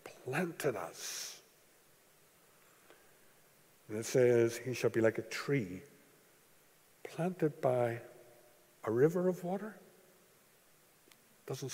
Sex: male